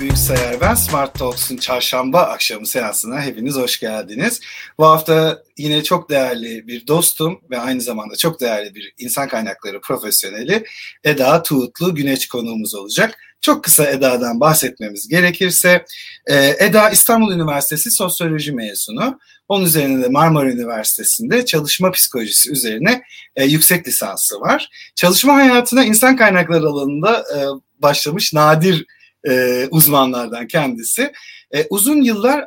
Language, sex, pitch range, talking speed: Turkish, male, 130-185 Hz, 115 wpm